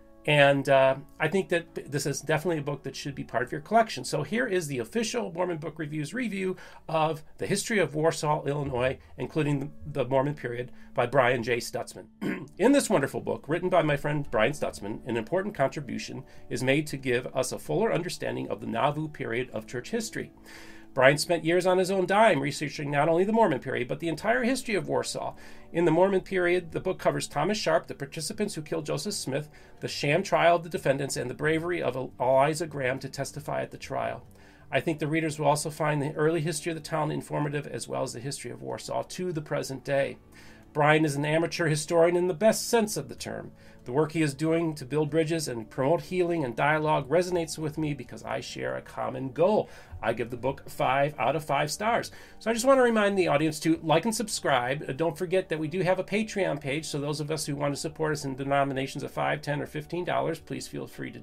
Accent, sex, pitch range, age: American, male, 140-175 Hz, 40-59